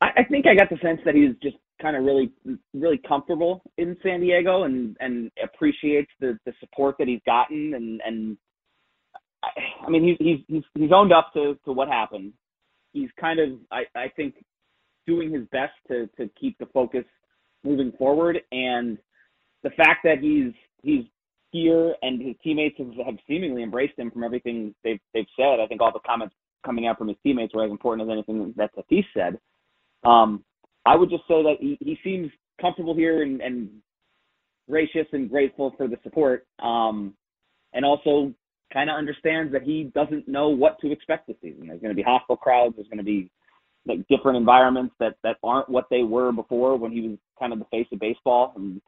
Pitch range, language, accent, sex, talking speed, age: 115-155 Hz, English, American, male, 195 wpm, 30-49